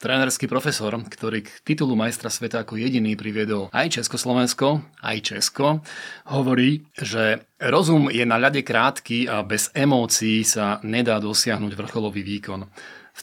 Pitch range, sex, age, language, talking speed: 110-135 Hz, male, 30-49, Slovak, 135 wpm